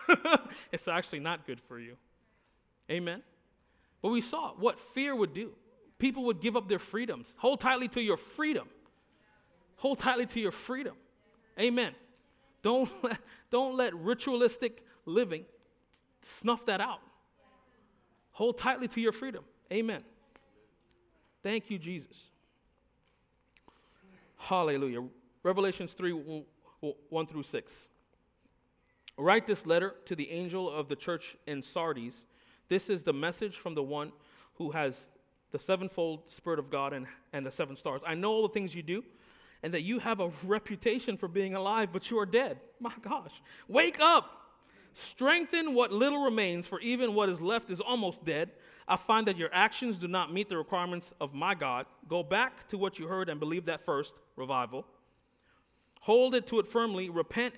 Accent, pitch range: American, 170-240 Hz